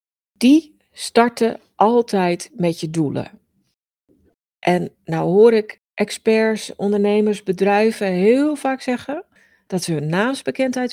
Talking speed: 110 wpm